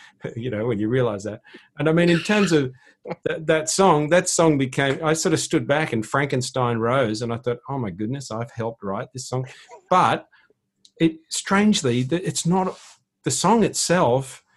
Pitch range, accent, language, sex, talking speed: 100-145 Hz, Australian, English, male, 185 wpm